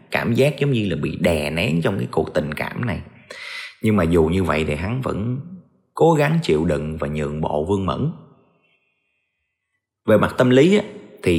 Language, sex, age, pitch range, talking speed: Vietnamese, male, 30-49, 80-120 Hz, 190 wpm